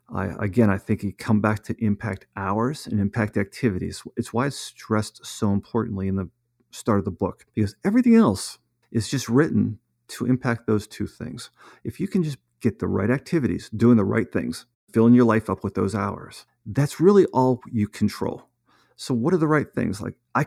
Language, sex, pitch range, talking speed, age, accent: English, male, 105-125 Hz, 195 wpm, 40-59, American